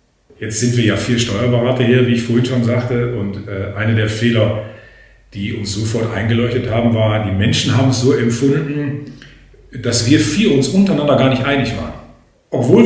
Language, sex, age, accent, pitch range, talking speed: German, male, 40-59, German, 115-140 Hz, 180 wpm